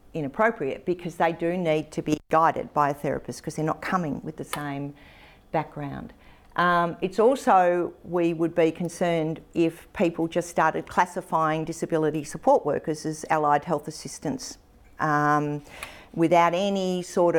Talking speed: 145 wpm